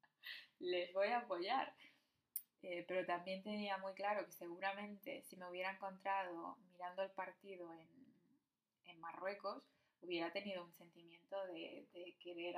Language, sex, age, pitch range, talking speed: Spanish, female, 20-39, 180-205 Hz, 140 wpm